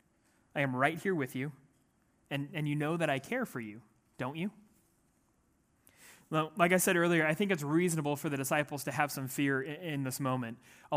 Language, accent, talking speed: English, American, 210 wpm